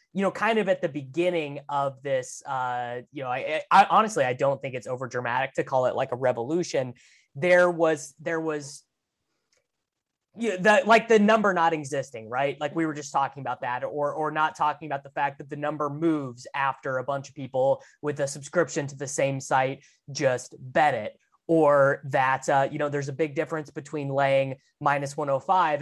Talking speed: 200 wpm